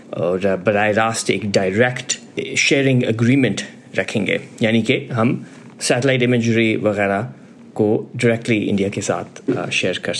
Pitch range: 110-145 Hz